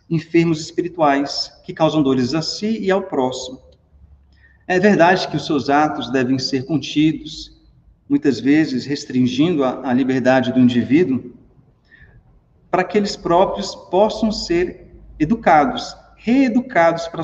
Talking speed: 120 wpm